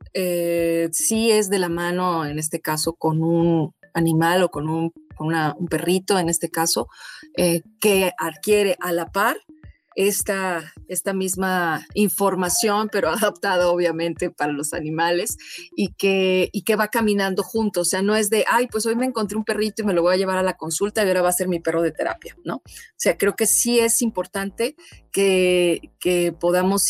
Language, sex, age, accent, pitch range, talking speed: Spanish, female, 30-49, Mexican, 170-210 Hz, 185 wpm